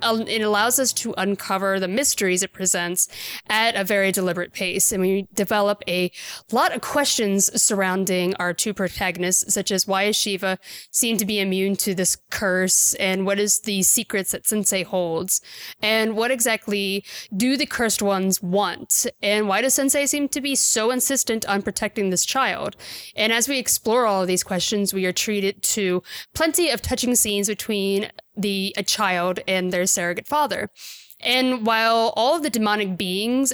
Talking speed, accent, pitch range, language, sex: 175 wpm, American, 185-225 Hz, English, female